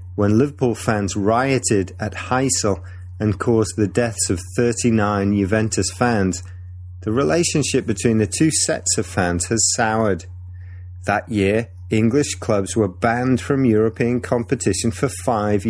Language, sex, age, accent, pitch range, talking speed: English, male, 30-49, British, 90-110 Hz, 135 wpm